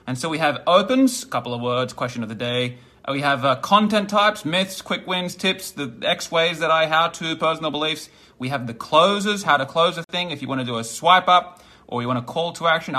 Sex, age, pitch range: male, 20-39, 135-185 Hz